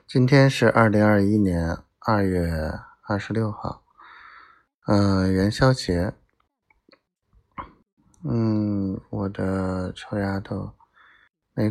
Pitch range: 90-115 Hz